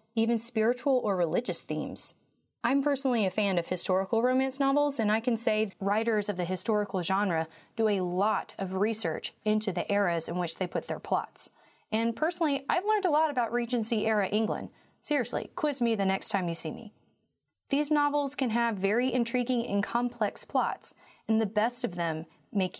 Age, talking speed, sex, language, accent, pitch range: 30-49, 180 wpm, female, English, American, 185-240 Hz